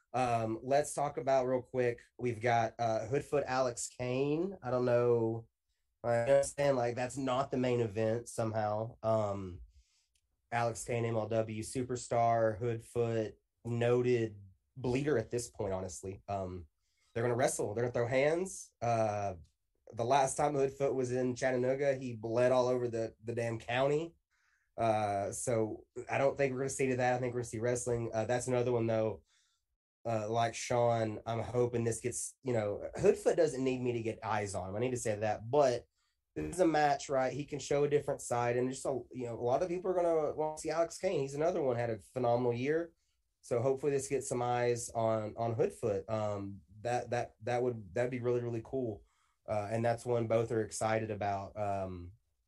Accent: American